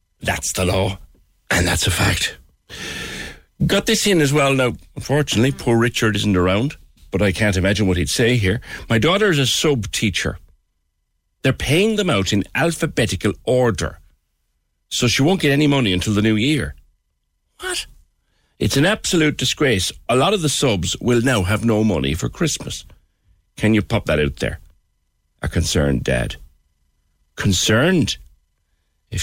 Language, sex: English, male